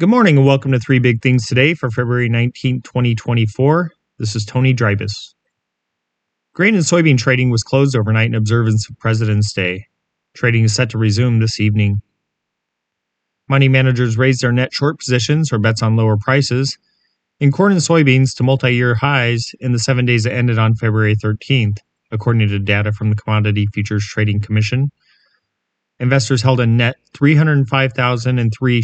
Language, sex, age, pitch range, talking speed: English, male, 30-49, 110-135 Hz, 160 wpm